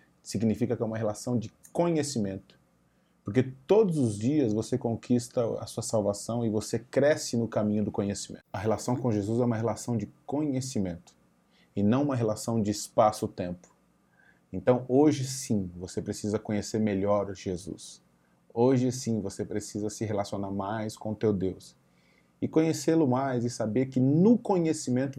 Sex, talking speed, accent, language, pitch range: male, 155 wpm, Brazilian, Portuguese, 100-125 Hz